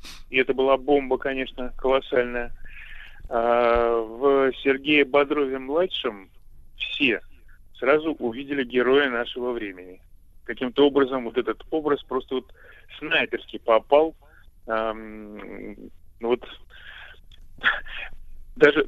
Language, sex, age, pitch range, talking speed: Russian, male, 20-39, 110-135 Hz, 85 wpm